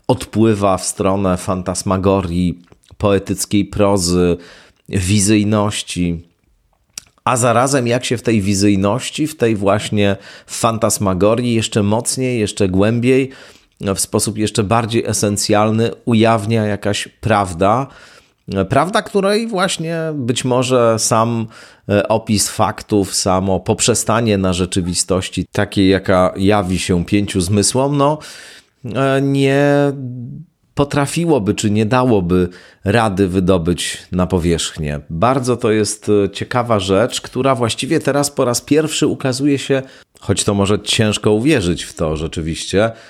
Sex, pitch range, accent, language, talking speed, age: male, 90-115 Hz, native, Polish, 110 wpm, 40-59